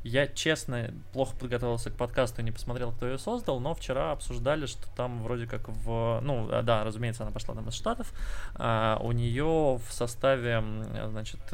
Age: 20-39